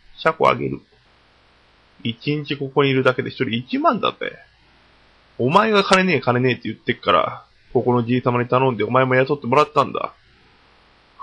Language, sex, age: Japanese, male, 20-39